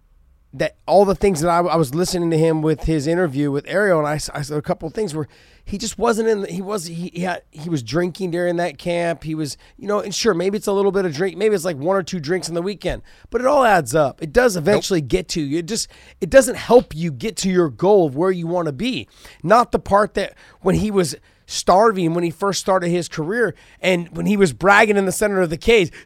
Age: 30-49